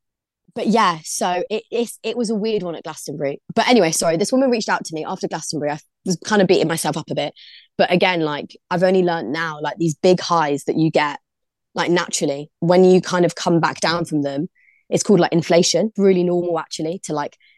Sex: female